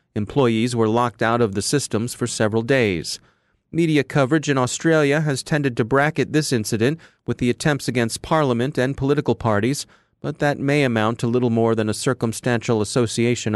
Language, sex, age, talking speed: English, male, 40-59, 175 wpm